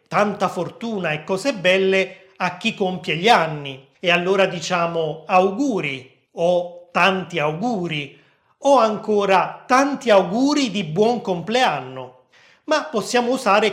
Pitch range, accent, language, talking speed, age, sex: 170-220 Hz, native, Italian, 120 wpm, 30-49, male